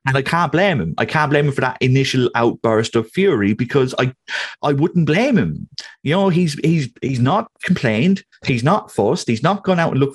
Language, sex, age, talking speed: English, male, 30-49, 220 wpm